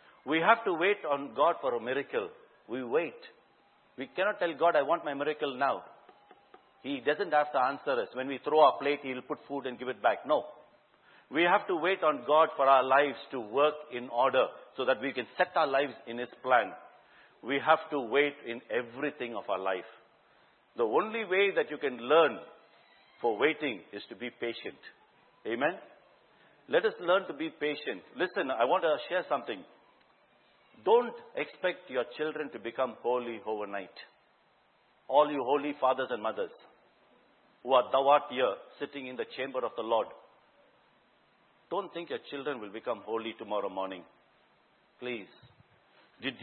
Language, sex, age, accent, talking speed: English, male, 60-79, Indian, 175 wpm